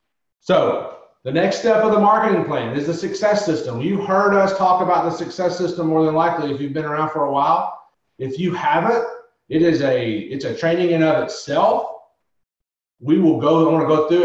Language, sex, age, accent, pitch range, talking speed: English, male, 40-59, American, 140-180 Hz, 210 wpm